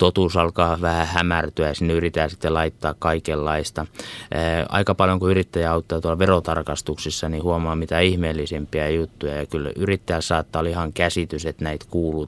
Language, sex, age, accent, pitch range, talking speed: Finnish, male, 20-39, native, 80-95 Hz, 160 wpm